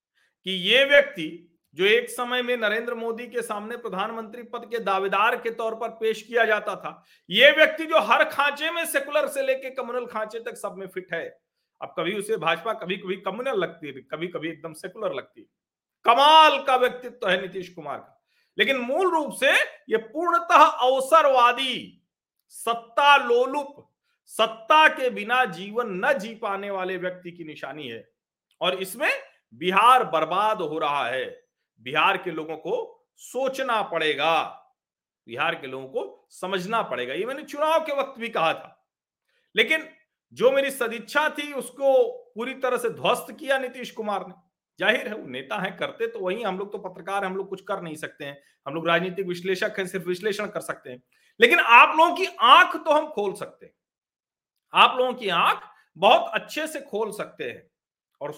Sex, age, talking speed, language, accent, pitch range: male, 50-69, 175 wpm, Hindi, native, 190-285 Hz